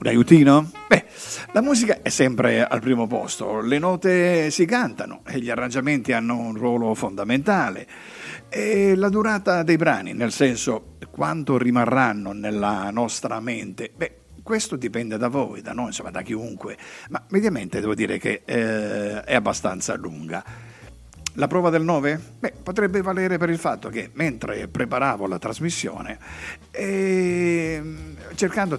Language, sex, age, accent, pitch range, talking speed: Italian, male, 50-69, native, 110-170 Hz, 145 wpm